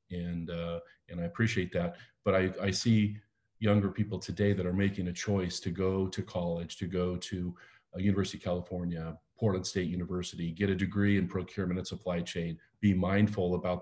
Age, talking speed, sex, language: 40-59, 185 wpm, male, English